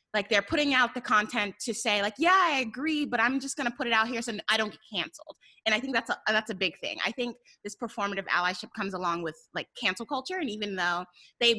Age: 20-39